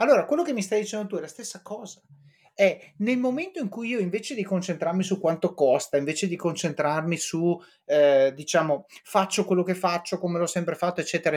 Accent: native